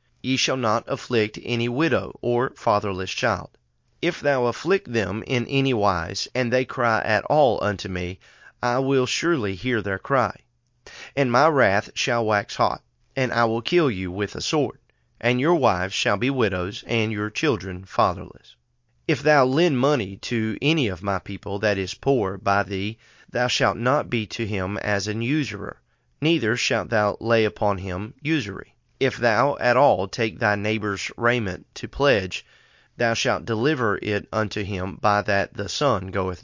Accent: American